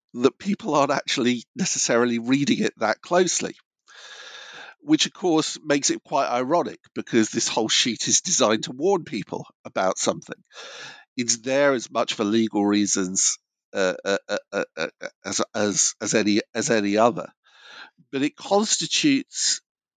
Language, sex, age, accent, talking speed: English, male, 50-69, British, 135 wpm